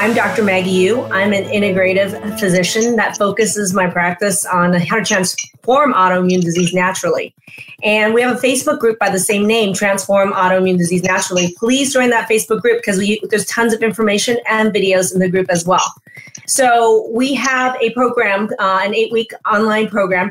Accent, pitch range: American, 185-235 Hz